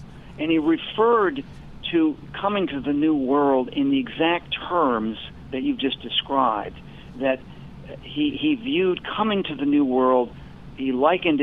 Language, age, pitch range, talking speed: English, 50-69, 130-170 Hz, 145 wpm